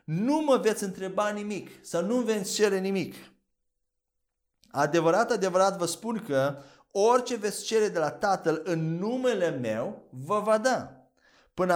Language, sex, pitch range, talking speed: Romanian, male, 175-230 Hz, 145 wpm